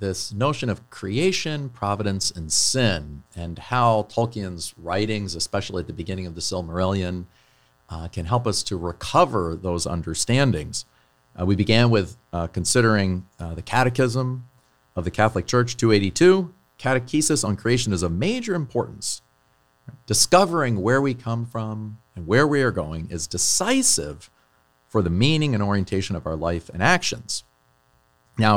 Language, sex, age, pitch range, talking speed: English, male, 40-59, 85-115 Hz, 145 wpm